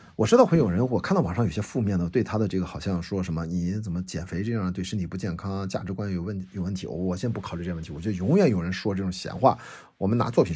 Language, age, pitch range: Chinese, 50-69, 90-110 Hz